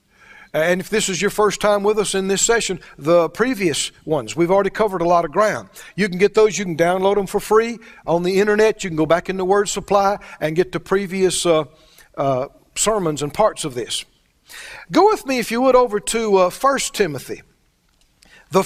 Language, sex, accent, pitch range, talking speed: English, male, American, 185-235 Hz, 210 wpm